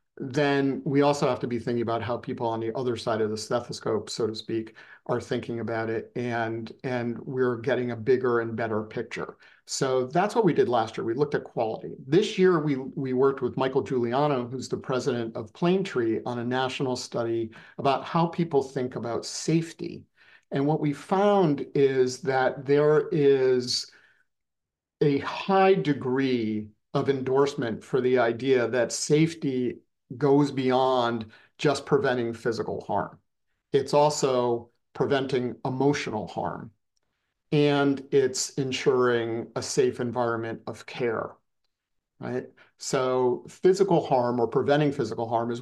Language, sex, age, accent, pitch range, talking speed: English, male, 50-69, American, 120-145 Hz, 150 wpm